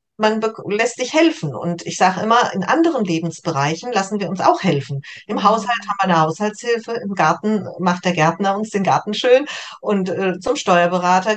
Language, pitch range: German, 175-220 Hz